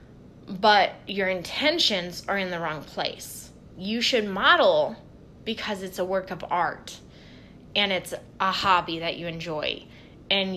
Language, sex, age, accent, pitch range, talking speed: English, female, 20-39, American, 180-220 Hz, 140 wpm